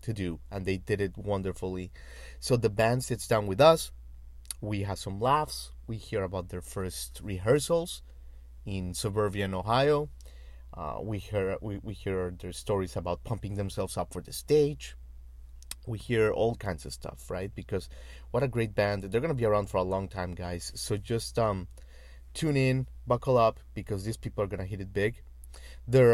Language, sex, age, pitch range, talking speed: English, male, 30-49, 85-120 Hz, 180 wpm